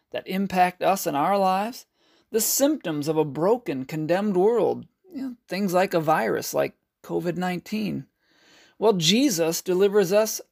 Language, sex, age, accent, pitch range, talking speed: English, male, 40-59, American, 170-225 Hz, 130 wpm